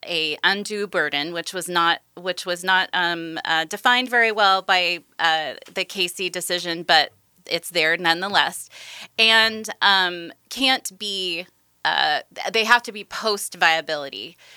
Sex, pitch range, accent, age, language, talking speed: female, 160-200 Hz, American, 20-39, English, 140 wpm